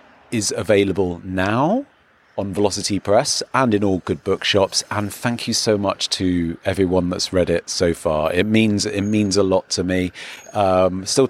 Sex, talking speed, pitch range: male, 175 wpm, 100-120 Hz